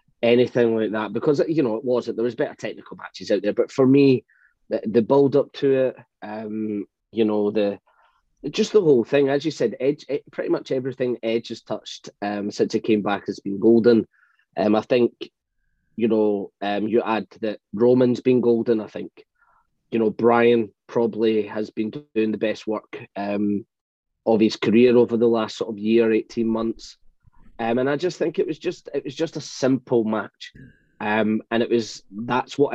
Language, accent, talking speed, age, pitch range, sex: English, British, 190 wpm, 20-39, 110-130 Hz, male